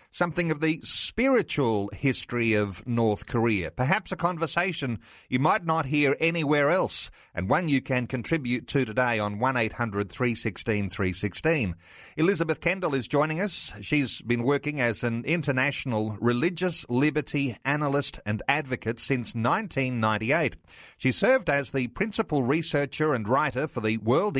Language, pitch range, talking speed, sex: English, 110-145 Hz, 135 wpm, male